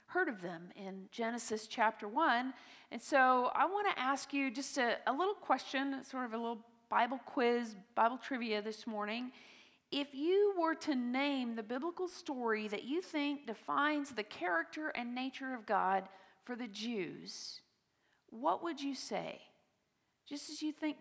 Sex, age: female, 40-59